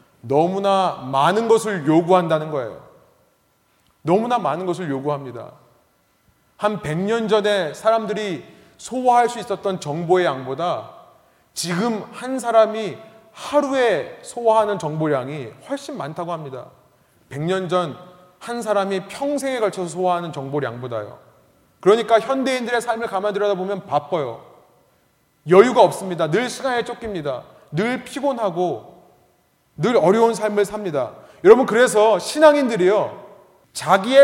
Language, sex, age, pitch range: Korean, male, 30-49, 180-255 Hz